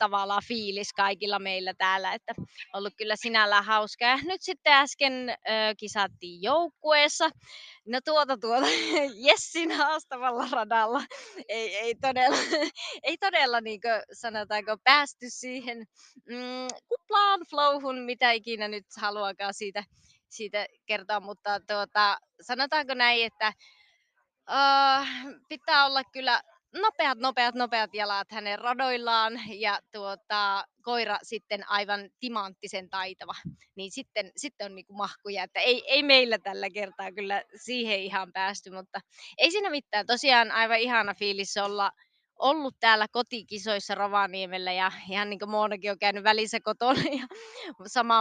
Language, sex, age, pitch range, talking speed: Finnish, female, 20-39, 205-260 Hz, 130 wpm